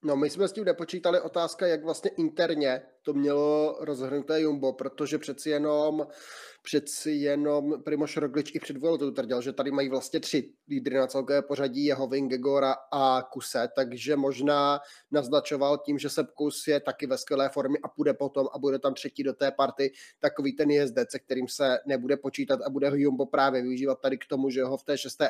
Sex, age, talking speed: male, 20-39, 190 wpm